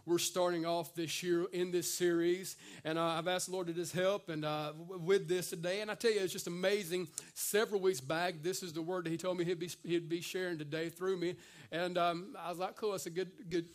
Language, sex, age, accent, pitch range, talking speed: English, male, 40-59, American, 165-190 Hz, 260 wpm